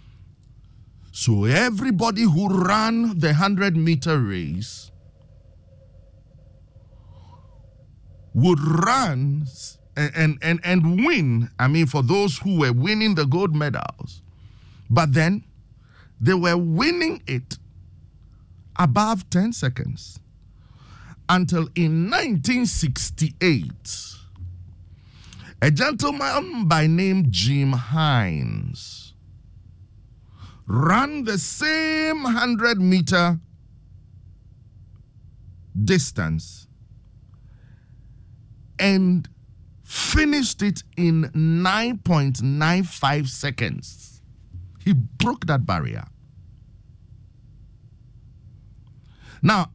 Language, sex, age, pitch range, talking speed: English, male, 50-69, 105-165 Hz, 70 wpm